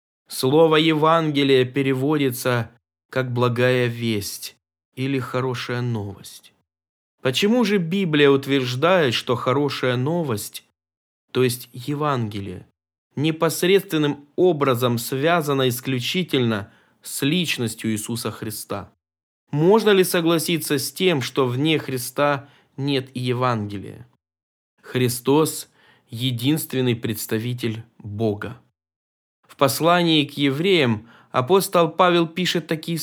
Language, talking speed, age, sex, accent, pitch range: Russian, 90 wpm, 20-39, male, native, 110-145 Hz